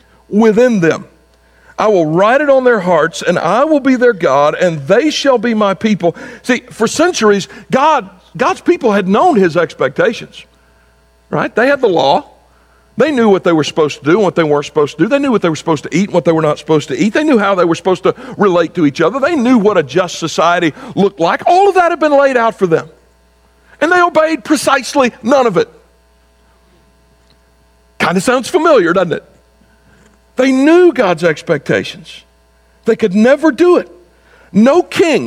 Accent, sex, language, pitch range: American, male, English, 155-250 Hz